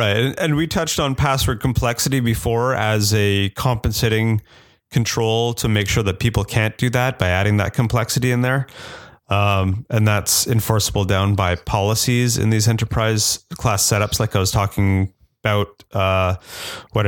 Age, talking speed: 30-49, 160 wpm